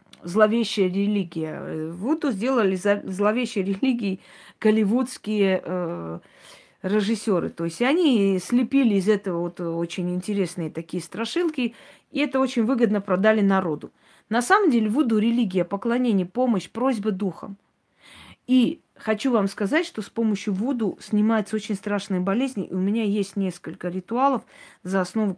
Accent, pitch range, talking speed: native, 185-230 Hz, 130 wpm